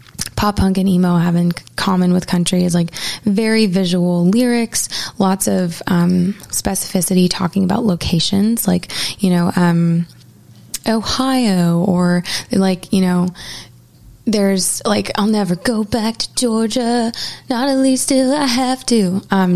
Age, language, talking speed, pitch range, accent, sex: 20-39, English, 140 wpm, 175-205 Hz, American, female